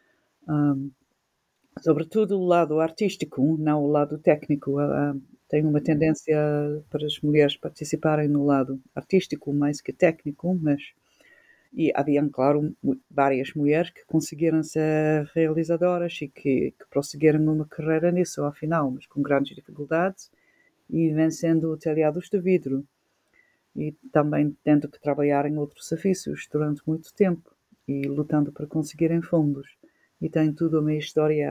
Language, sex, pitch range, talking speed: Spanish, female, 145-170 Hz, 130 wpm